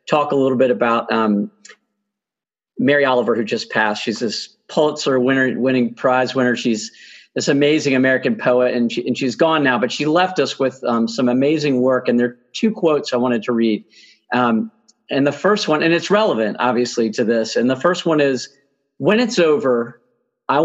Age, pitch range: 50-69, 125-175 Hz